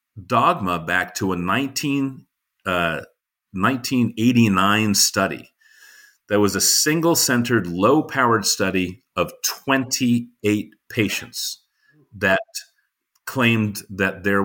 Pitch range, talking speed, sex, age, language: 95-130 Hz, 85 wpm, male, 40-59, English